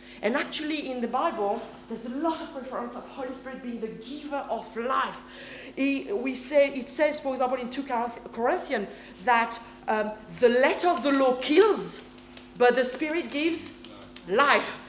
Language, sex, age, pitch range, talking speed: English, female, 40-59, 210-280 Hz, 170 wpm